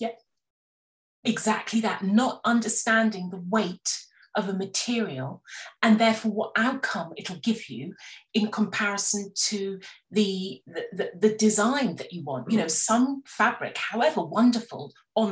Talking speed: 135 wpm